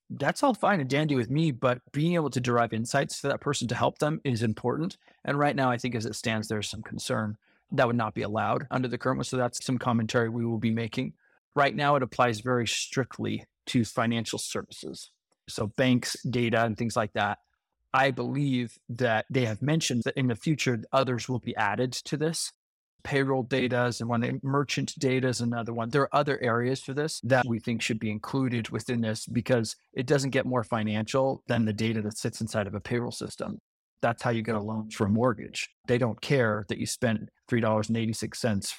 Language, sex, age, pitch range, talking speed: English, male, 30-49, 110-130 Hz, 210 wpm